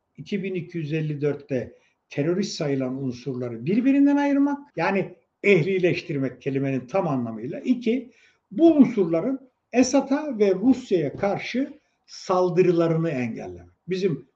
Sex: male